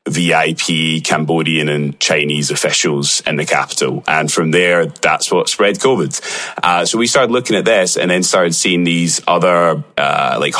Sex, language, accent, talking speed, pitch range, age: male, English, British, 170 wpm, 75-90 Hz, 30-49